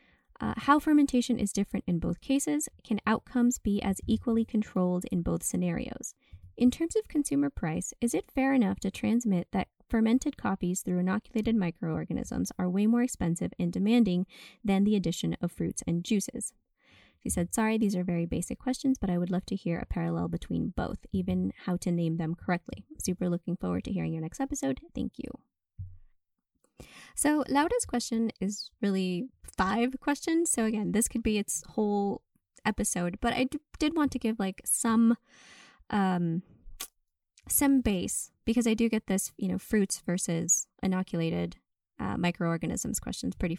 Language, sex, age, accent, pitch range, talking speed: English, female, 20-39, American, 180-240 Hz, 165 wpm